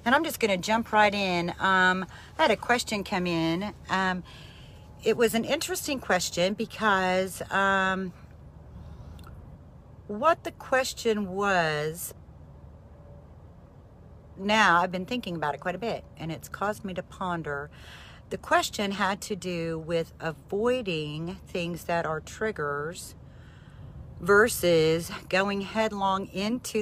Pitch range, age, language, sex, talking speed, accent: 155-200 Hz, 40-59, English, female, 130 wpm, American